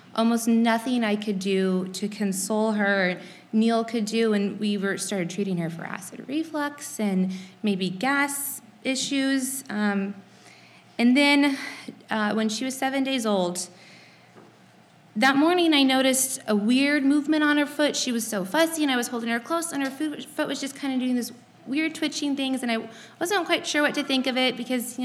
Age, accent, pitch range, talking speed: 20-39, American, 195-255 Hz, 185 wpm